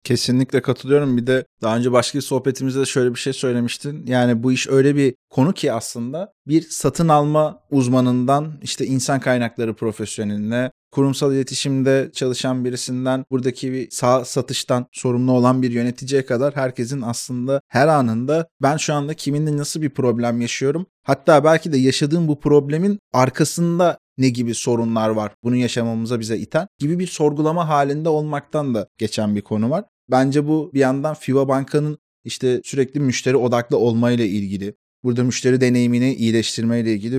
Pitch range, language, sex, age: 120-145 Hz, Turkish, male, 30-49